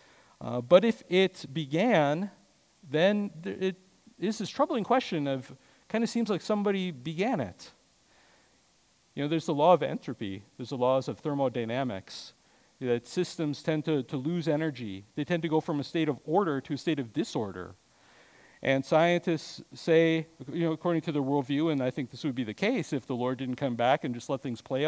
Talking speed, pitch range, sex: 195 wpm, 145-185 Hz, male